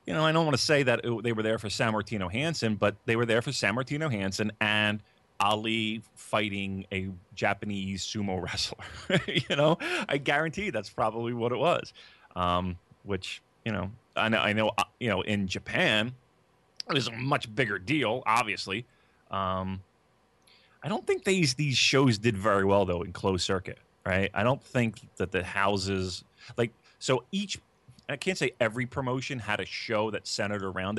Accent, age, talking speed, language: American, 30-49, 180 wpm, English